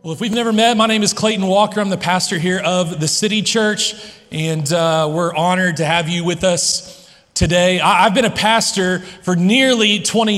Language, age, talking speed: English, 30-49, 200 wpm